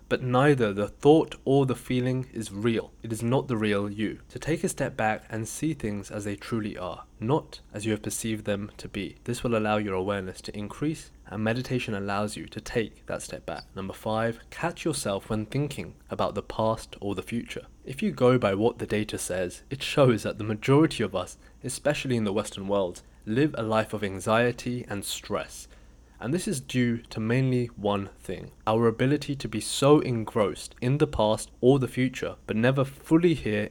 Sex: male